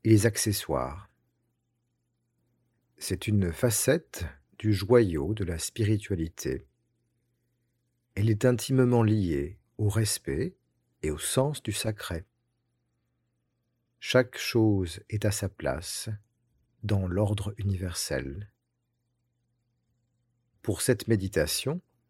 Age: 50-69